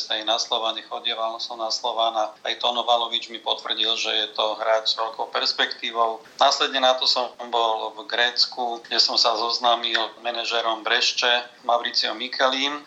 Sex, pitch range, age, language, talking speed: male, 110-125 Hz, 40-59, Slovak, 150 wpm